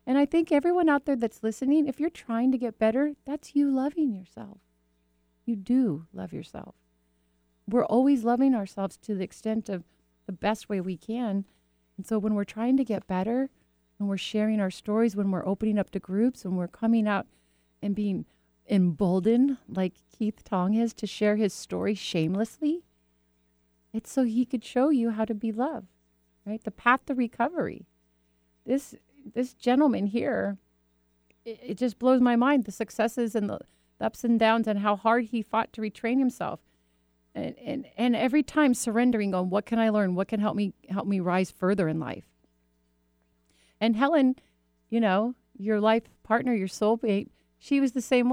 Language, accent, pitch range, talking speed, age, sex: English, American, 160-235 Hz, 180 wpm, 30-49, female